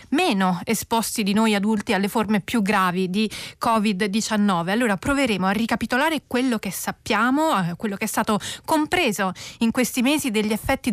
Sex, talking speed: female, 160 wpm